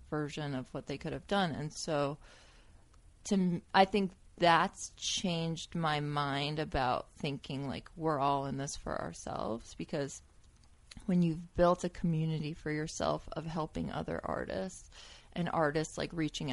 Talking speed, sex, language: 150 wpm, female, English